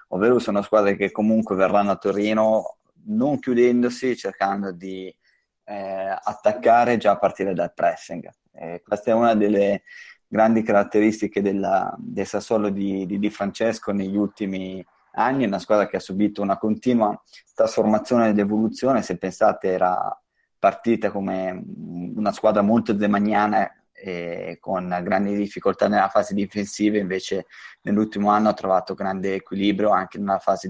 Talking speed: 140 wpm